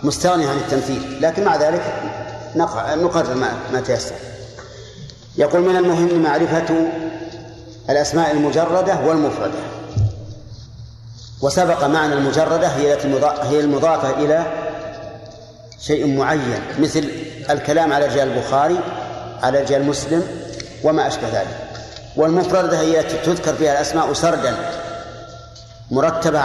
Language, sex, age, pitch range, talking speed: Arabic, male, 50-69, 130-165 Hz, 100 wpm